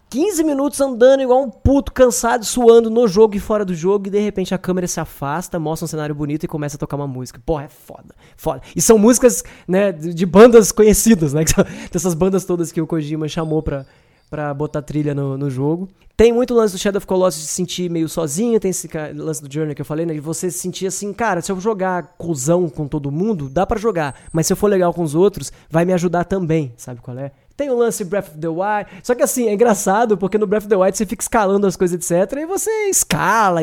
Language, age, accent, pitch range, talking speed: Portuguese, 20-39, Brazilian, 155-220 Hz, 245 wpm